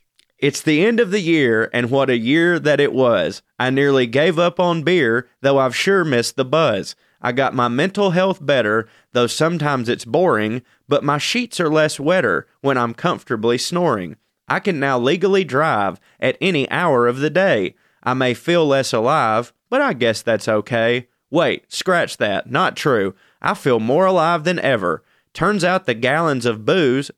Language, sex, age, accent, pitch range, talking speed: English, male, 30-49, American, 120-175 Hz, 185 wpm